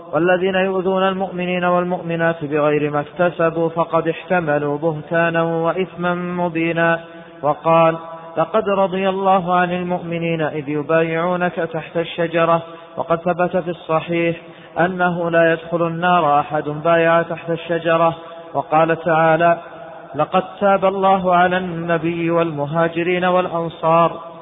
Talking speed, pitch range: 105 wpm, 165-175 Hz